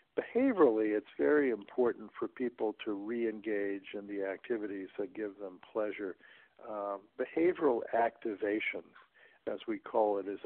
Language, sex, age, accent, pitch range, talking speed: English, male, 60-79, American, 100-120 Hz, 130 wpm